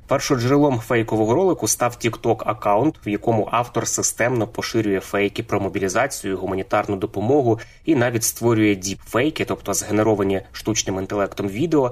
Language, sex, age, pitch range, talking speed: Ukrainian, male, 20-39, 100-115 Hz, 130 wpm